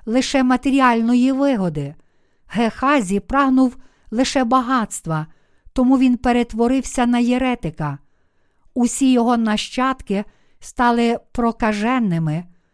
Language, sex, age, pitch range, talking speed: Ukrainian, female, 50-69, 210-255 Hz, 80 wpm